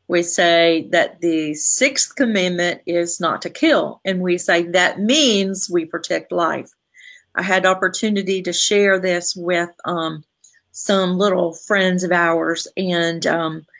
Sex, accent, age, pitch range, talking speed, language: female, American, 40-59, 185-225 Hz, 145 wpm, English